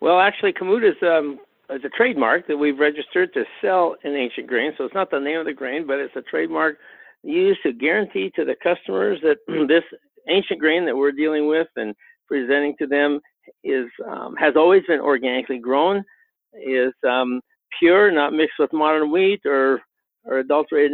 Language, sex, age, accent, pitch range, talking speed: English, male, 60-79, American, 140-185 Hz, 185 wpm